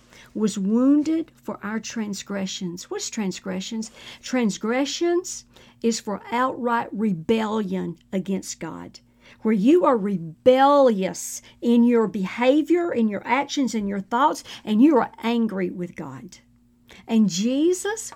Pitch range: 160-255 Hz